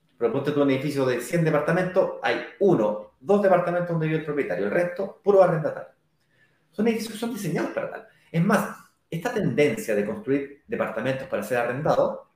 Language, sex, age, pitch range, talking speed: Spanish, male, 30-49, 145-205 Hz, 170 wpm